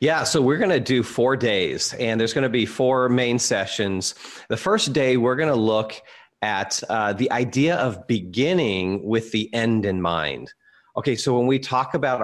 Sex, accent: male, American